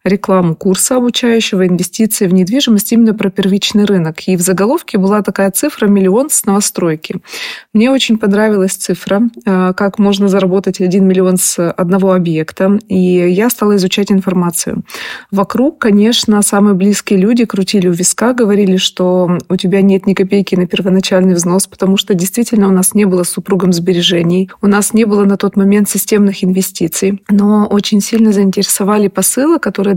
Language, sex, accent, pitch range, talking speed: Russian, female, native, 185-215 Hz, 155 wpm